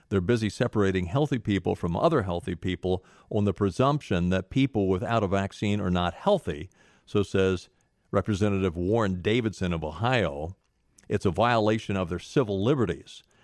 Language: English